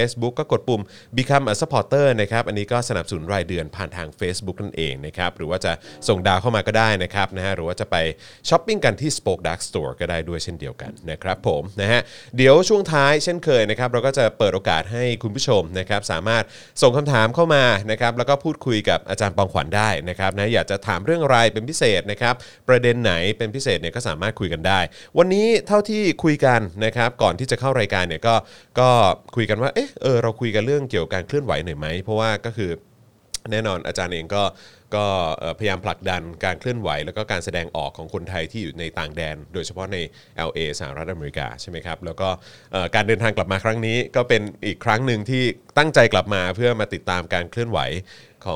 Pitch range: 90-120 Hz